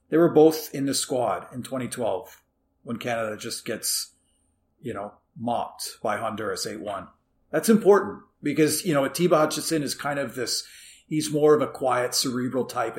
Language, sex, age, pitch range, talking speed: English, male, 40-59, 115-160 Hz, 165 wpm